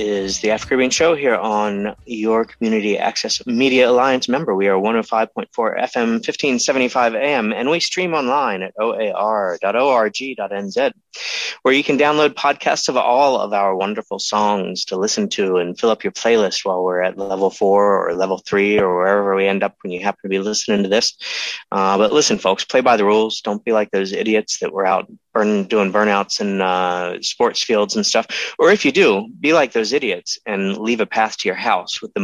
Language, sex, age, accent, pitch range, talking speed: English, male, 30-49, American, 100-130 Hz, 195 wpm